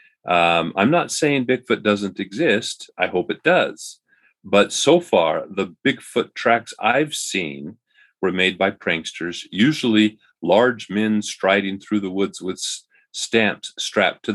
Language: English